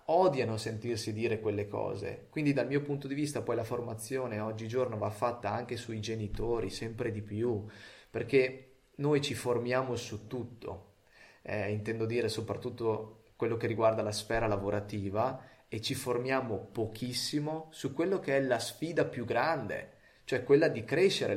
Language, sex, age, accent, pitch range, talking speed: Italian, male, 30-49, native, 105-130 Hz, 155 wpm